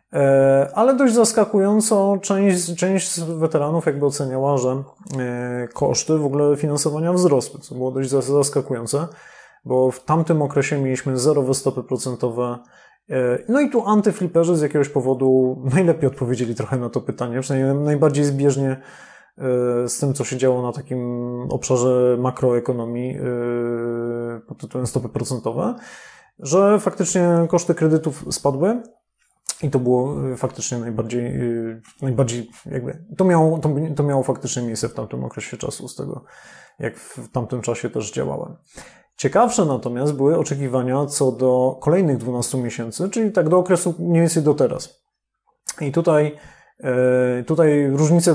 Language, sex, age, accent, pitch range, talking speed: Polish, male, 20-39, native, 125-160 Hz, 130 wpm